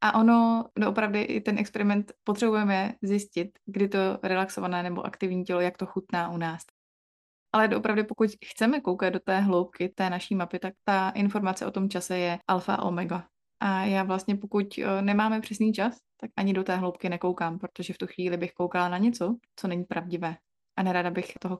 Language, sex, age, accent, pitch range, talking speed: Czech, female, 20-39, native, 180-215 Hz, 185 wpm